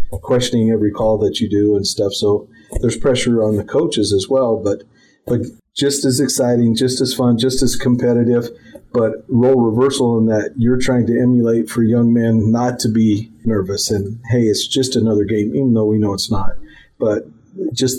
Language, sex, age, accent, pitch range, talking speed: English, male, 40-59, American, 105-125 Hz, 190 wpm